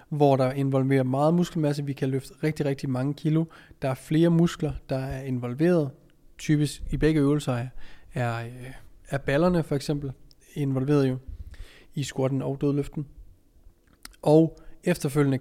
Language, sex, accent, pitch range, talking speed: Danish, male, native, 130-155 Hz, 140 wpm